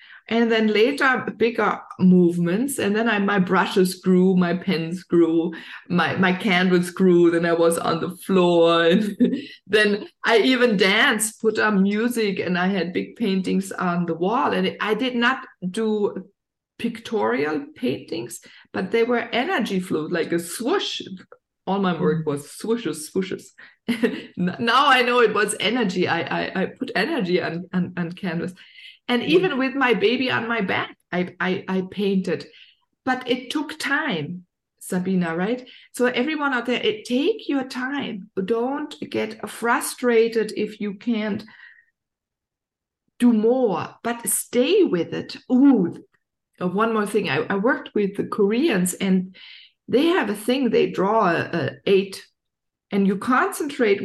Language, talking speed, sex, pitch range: English, 150 wpm, female, 180-245 Hz